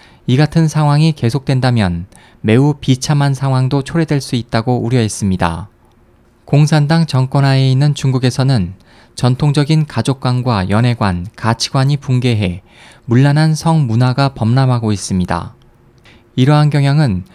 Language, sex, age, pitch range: Korean, male, 20-39, 115-145 Hz